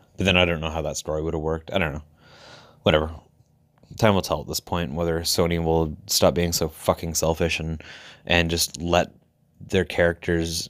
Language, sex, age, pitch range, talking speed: English, male, 20-39, 80-100 Hz, 190 wpm